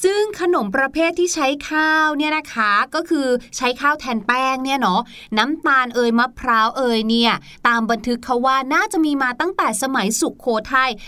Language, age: Thai, 20-39